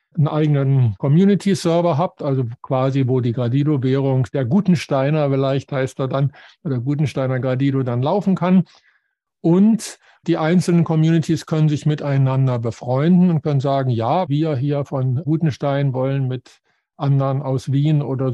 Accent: German